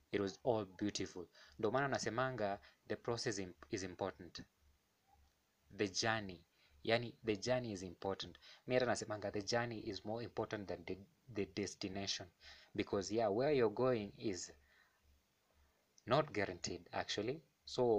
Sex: male